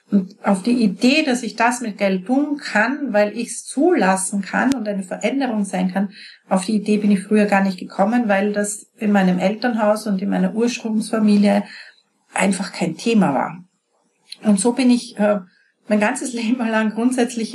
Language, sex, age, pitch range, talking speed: German, female, 40-59, 190-230 Hz, 180 wpm